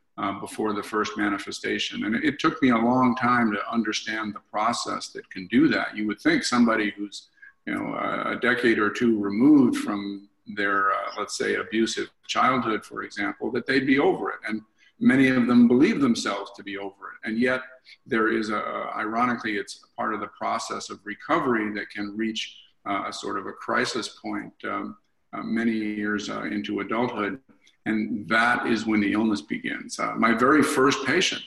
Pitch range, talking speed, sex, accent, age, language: 105-130 Hz, 195 wpm, male, American, 50-69, English